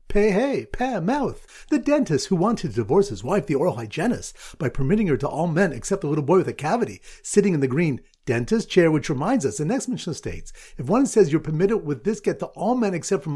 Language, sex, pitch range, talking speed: English, male, 145-210 Hz, 245 wpm